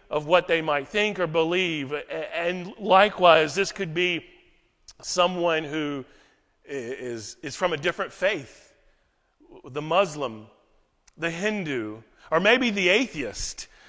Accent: American